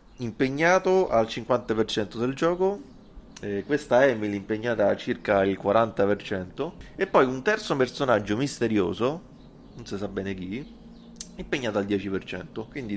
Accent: native